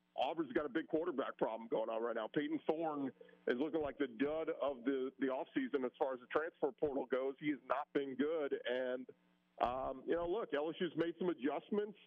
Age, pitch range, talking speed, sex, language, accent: 40-59, 130-180 Hz, 210 wpm, male, English, American